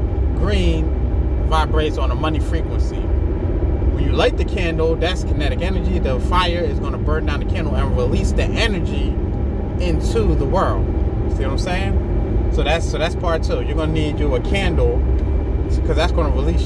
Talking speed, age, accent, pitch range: 185 wpm, 20-39, American, 75-90 Hz